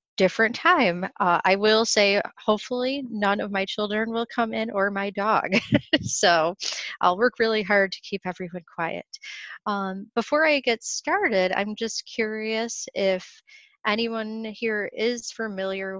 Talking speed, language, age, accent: 145 wpm, English, 30-49, American